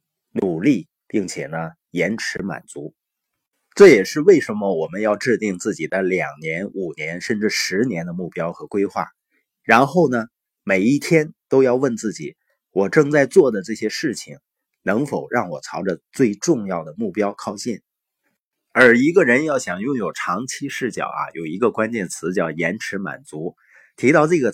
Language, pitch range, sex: Chinese, 100-135 Hz, male